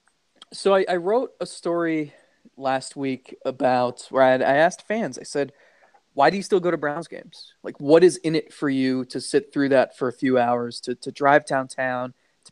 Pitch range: 135-175 Hz